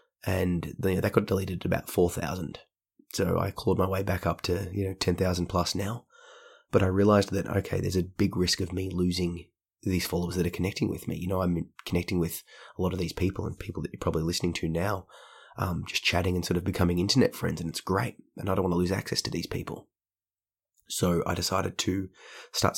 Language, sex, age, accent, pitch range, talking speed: English, male, 20-39, Australian, 90-100 Hz, 225 wpm